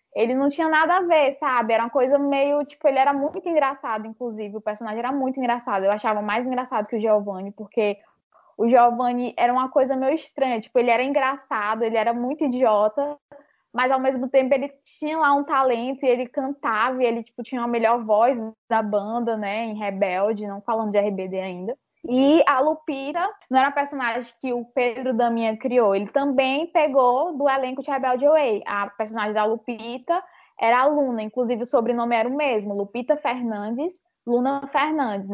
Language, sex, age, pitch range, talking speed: Portuguese, female, 10-29, 225-285 Hz, 185 wpm